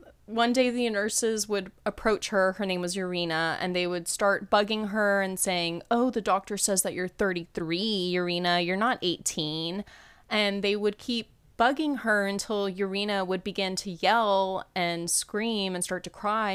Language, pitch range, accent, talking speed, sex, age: English, 175-205 Hz, American, 175 wpm, female, 20-39